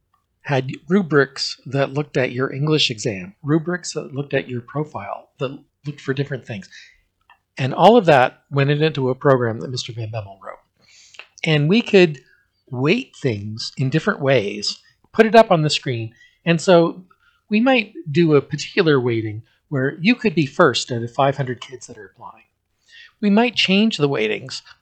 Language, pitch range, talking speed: English, 125-170 Hz, 170 wpm